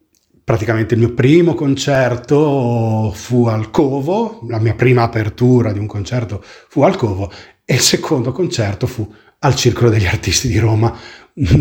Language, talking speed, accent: Italian, 155 wpm, native